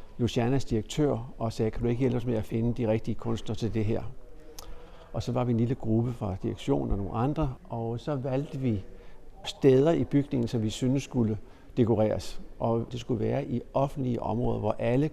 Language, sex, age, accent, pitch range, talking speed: Danish, male, 60-79, native, 110-130 Hz, 200 wpm